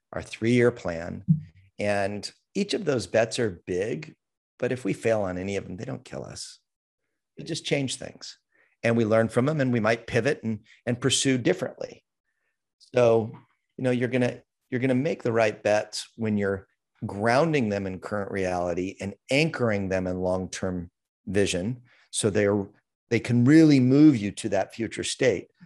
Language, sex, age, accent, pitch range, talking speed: English, male, 40-59, American, 100-125 Hz, 175 wpm